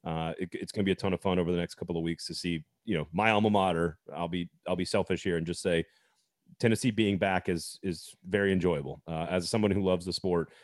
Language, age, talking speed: English, 30-49, 260 wpm